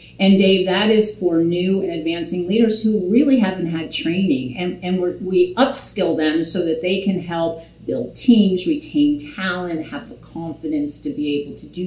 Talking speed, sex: 180 wpm, female